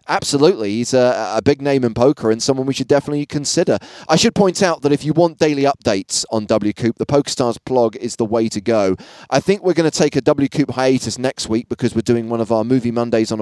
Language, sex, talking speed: English, male, 245 wpm